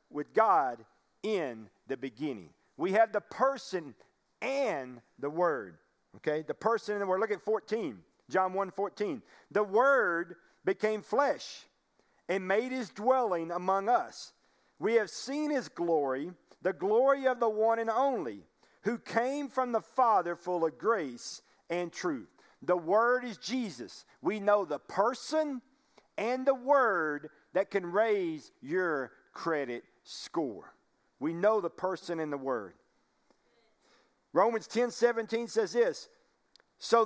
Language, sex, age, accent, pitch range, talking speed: English, male, 50-69, American, 190-275 Hz, 140 wpm